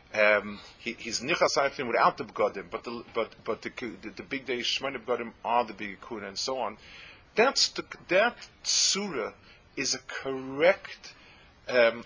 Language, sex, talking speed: English, male, 150 wpm